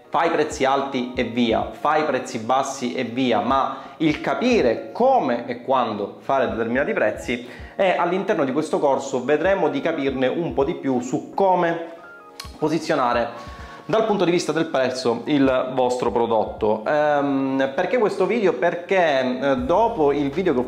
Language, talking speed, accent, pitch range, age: Italian, 155 wpm, native, 125-165 Hz, 30-49